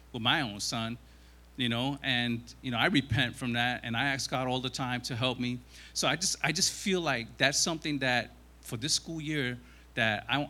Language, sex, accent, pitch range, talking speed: English, male, American, 110-160 Hz, 225 wpm